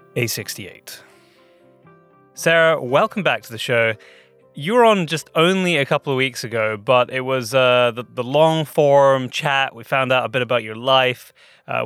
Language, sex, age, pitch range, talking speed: English, male, 20-39, 120-155 Hz, 170 wpm